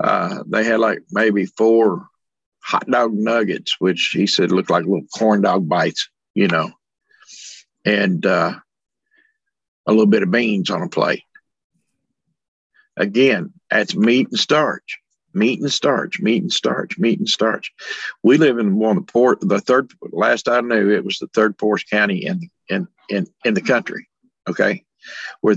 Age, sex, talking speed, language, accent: 50-69, male, 165 wpm, English, American